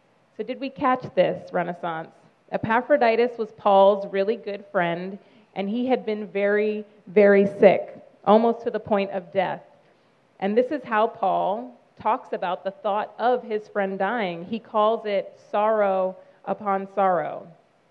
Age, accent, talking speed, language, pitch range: 30-49, American, 145 wpm, English, 190-220 Hz